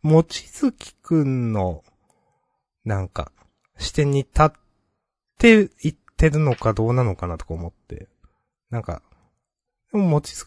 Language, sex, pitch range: Japanese, male, 95-150 Hz